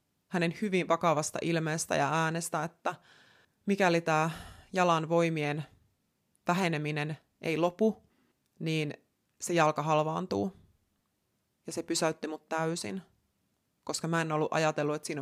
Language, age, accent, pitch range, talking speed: Finnish, 30-49, native, 150-180 Hz, 115 wpm